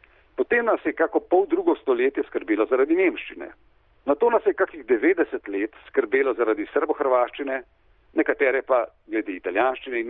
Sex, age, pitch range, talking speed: male, 50-69, 330-395 Hz, 150 wpm